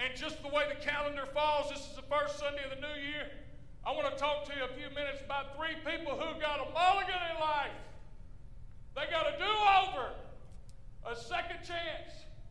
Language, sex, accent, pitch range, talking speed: English, male, American, 270-325 Hz, 195 wpm